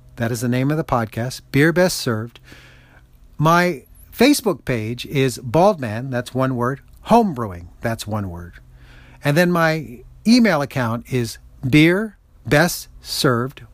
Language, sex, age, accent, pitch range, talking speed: English, male, 40-59, American, 110-160 Hz, 125 wpm